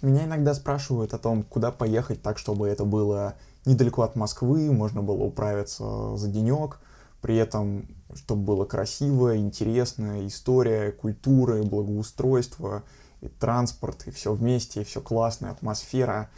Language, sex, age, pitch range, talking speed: Russian, male, 20-39, 105-125 Hz, 135 wpm